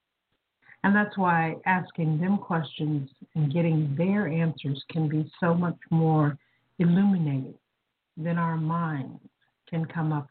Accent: American